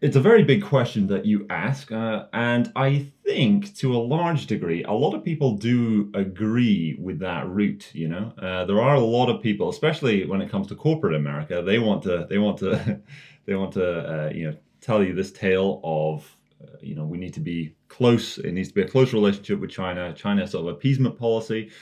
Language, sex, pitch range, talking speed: English, male, 85-120 Hz, 215 wpm